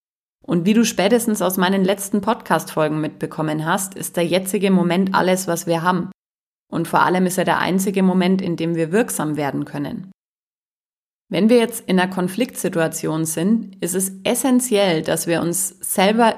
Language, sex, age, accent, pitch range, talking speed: German, female, 30-49, German, 170-205 Hz, 170 wpm